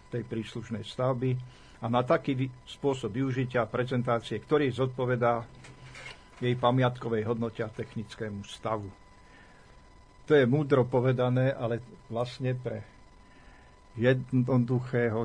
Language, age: Slovak, 50-69